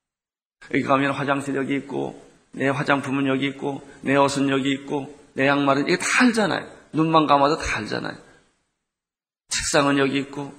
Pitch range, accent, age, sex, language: 140-155 Hz, native, 40-59, male, Korean